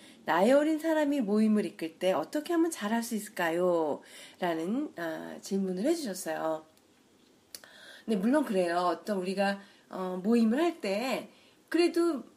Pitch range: 185-295 Hz